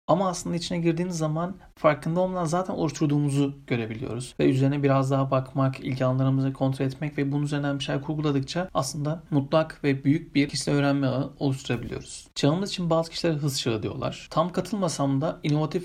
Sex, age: male, 40-59